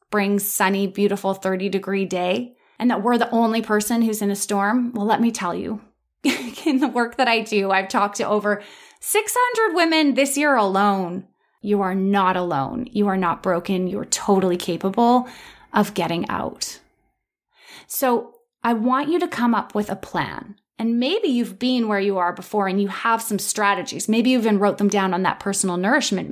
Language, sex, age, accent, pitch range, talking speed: English, female, 20-39, American, 195-245 Hz, 190 wpm